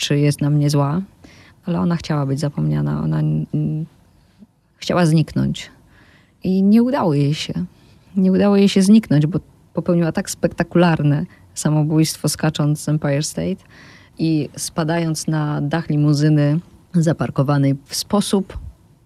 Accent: native